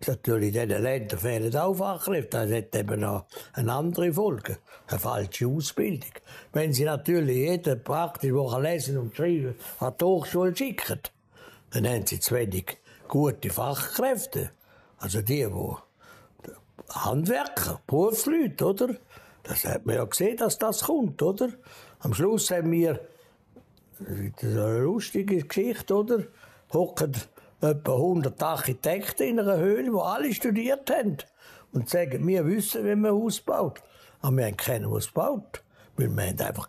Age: 60-79